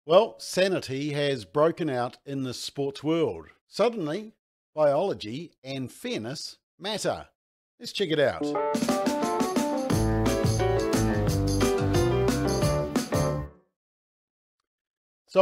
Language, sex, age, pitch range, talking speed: English, male, 50-69, 115-155 Hz, 75 wpm